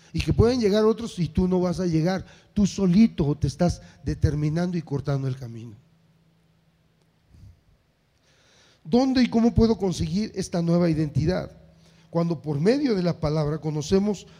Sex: male